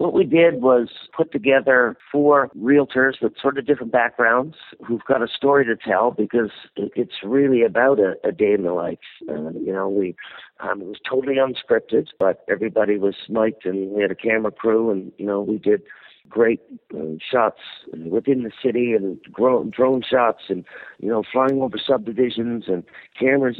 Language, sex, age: English, male, 50-69